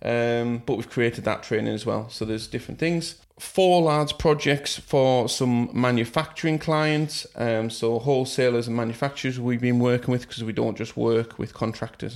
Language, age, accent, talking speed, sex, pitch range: English, 30-49, British, 175 wpm, male, 115-135 Hz